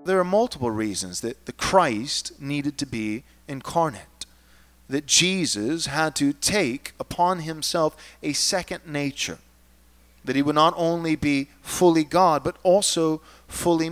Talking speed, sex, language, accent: 140 wpm, male, English, American